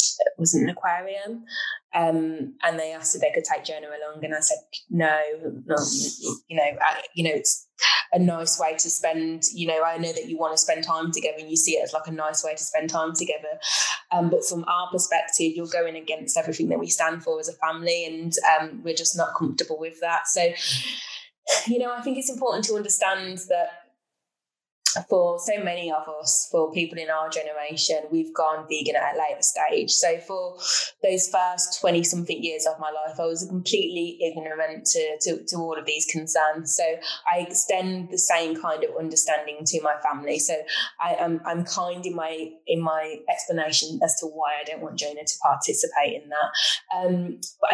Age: 20-39